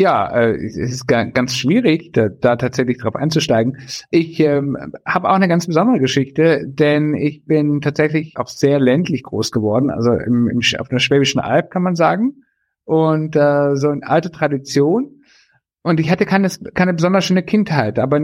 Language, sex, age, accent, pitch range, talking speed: German, male, 50-69, German, 135-165 Hz, 170 wpm